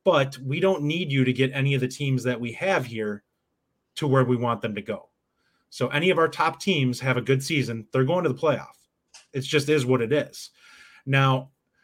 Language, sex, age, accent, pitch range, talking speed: English, male, 30-49, American, 125-160 Hz, 225 wpm